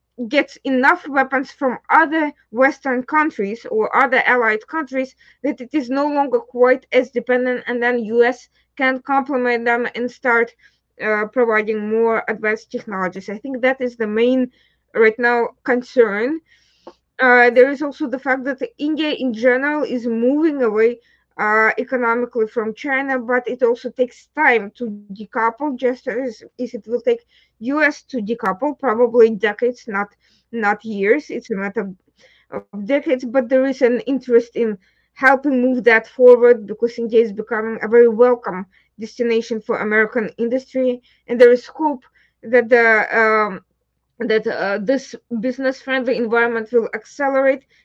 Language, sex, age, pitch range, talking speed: English, female, 20-39, 225-265 Hz, 150 wpm